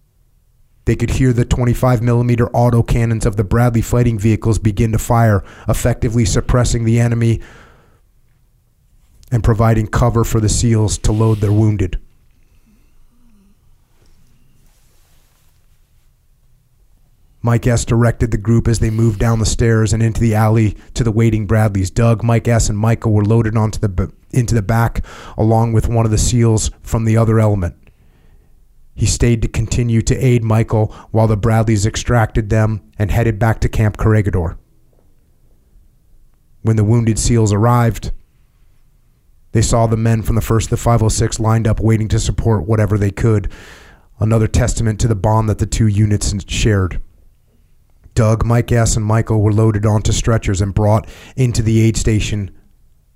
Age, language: 30-49, English